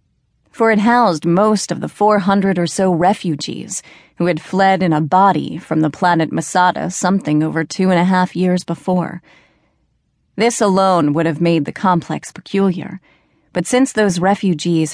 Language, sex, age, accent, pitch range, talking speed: English, female, 30-49, American, 160-190 Hz, 160 wpm